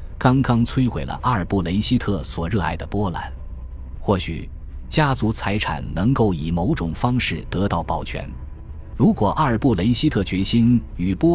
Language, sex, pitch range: Chinese, male, 80-115 Hz